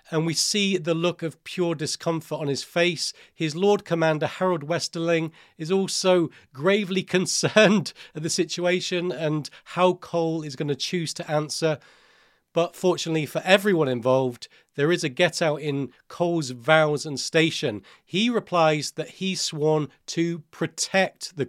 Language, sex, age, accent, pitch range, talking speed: English, male, 40-59, British, 155-185 Hz, 150 wpm